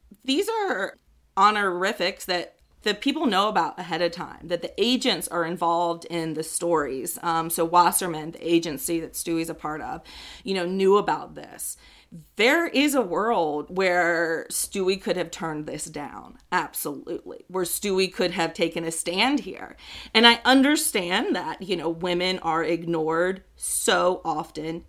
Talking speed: 155 wpm